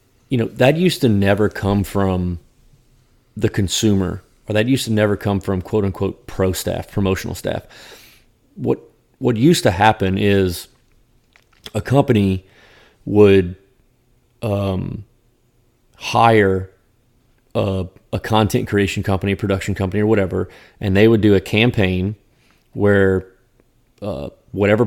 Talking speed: 125 wpm